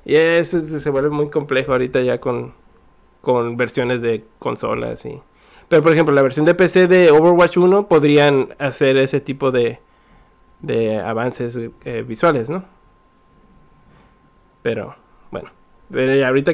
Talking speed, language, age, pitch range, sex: 135 wpm, Spanish, 20-39, 125-160 Hz, male